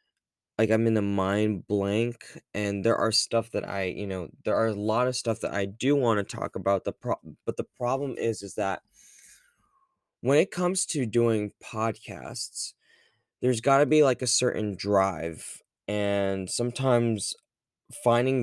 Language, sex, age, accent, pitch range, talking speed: English, male, 20-39, American, 95-120 Hz, 170 wpm